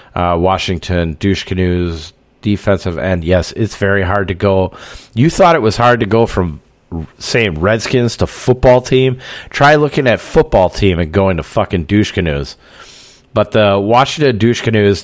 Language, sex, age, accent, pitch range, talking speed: English, male, 40-59, American, 80-105 Hz, 170 wpm